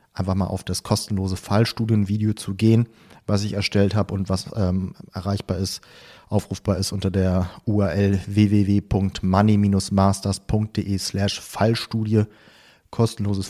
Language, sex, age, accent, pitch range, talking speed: German, male, 30-49, German, 100-110 Hz, 115 wpm